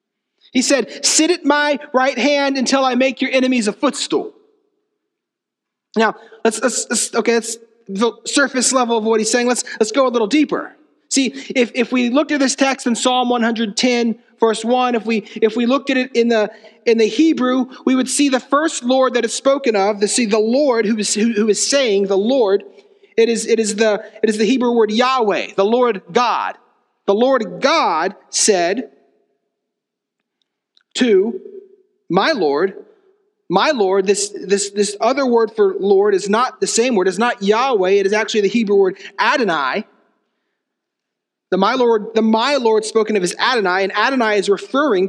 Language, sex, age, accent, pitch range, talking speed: English, male, 40-59, American, 220-280 Hz, 185 wpm